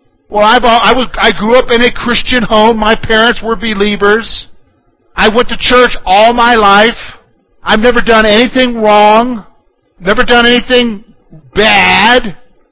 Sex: male